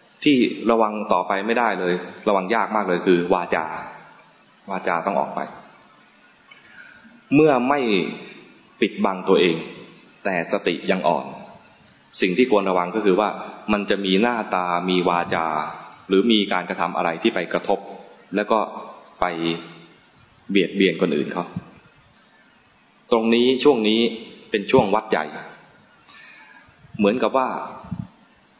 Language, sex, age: English, male, 20-39